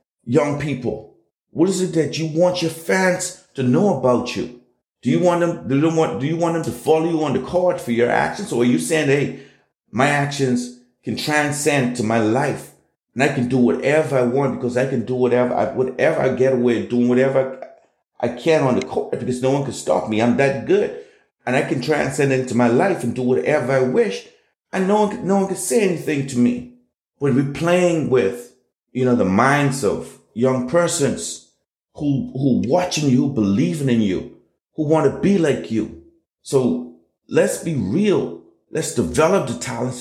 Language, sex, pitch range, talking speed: English, male, 125-170 Hz, 200 wpm